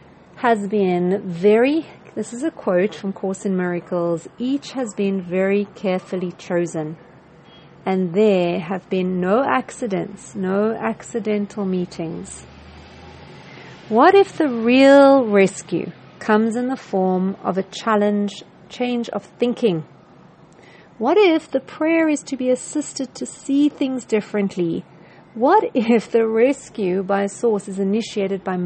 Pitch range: 180-230 Hz